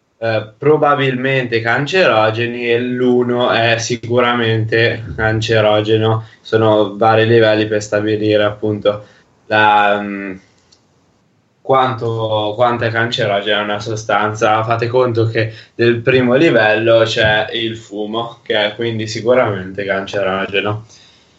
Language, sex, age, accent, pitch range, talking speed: Italian, male, 10-29, native, 110-125 Hz, 100 wpm